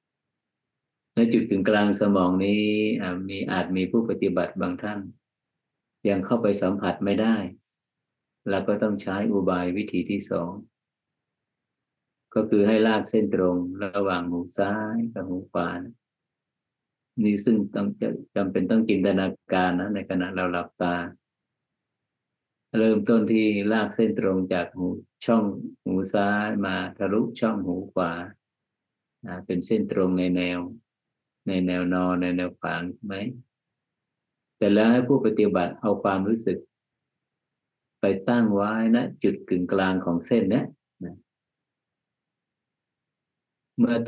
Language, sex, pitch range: Thai, male, 95-115 Hz